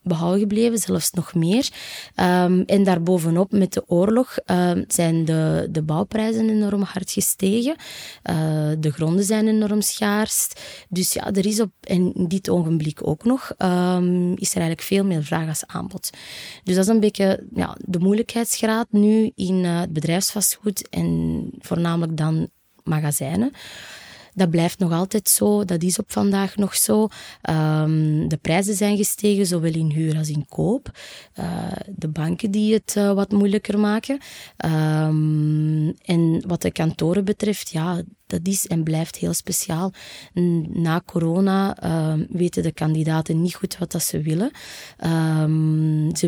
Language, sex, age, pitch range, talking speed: Dutch, female, 20-39, 160-200 Hz, 150 wpm